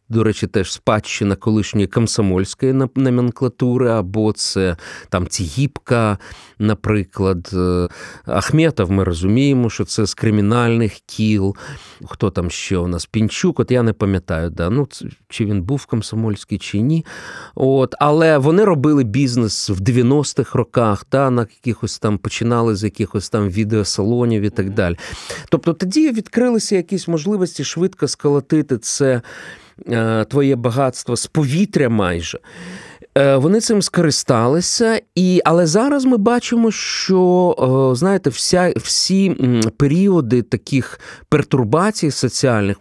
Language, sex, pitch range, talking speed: Ukrainian, male, 105-150 Hz, 120 wpm